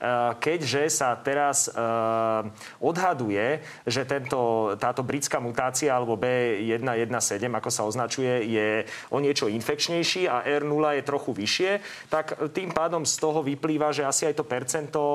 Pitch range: 115-145 Hz